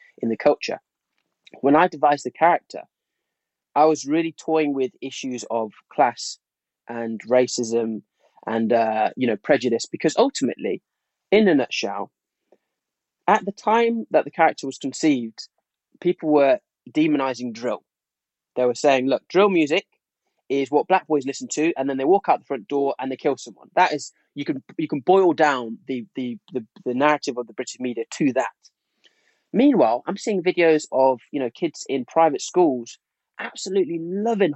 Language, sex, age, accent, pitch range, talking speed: English, male, 20-39, British, 125-185 Hz, 165 wpm